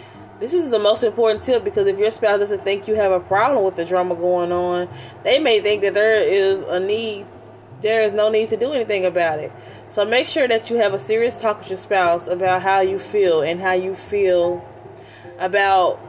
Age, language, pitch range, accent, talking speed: 20-39, English, 180-235 Hz, American, 220 wpm